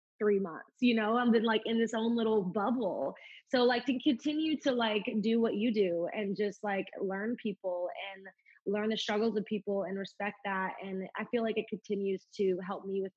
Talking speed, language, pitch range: 210 wpm, English, 195-230 Hz